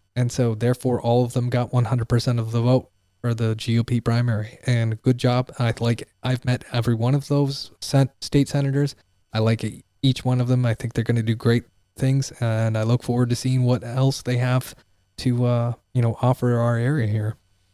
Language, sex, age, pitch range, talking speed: English, male, 20-39, 110-130 Hz, 210 wpm